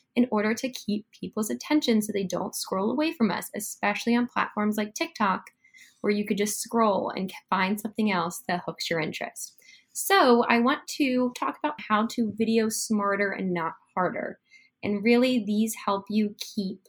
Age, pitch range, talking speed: 10-29, 190-245 Hz, 180 wpm